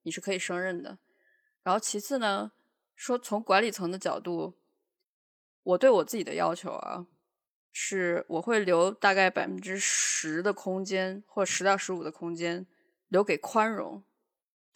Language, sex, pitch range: Chinese, female, 175-245 Hz